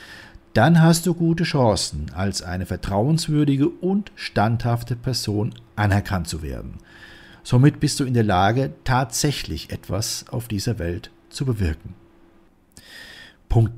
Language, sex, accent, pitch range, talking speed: German, male, German, 95-135 Hz, 120 wpm